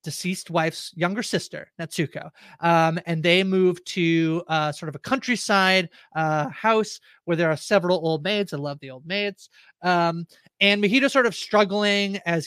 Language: English